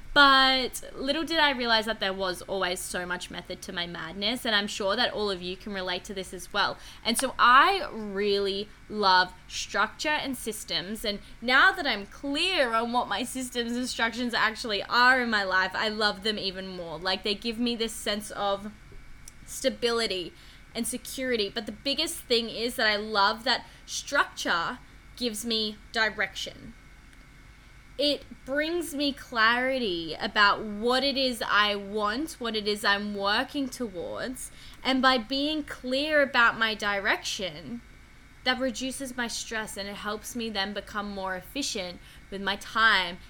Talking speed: 165 wpm